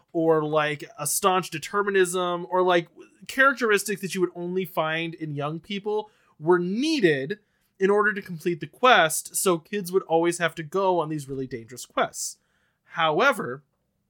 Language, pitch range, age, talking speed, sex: English, 165-200 Hz, 20-39, 160 wpm, male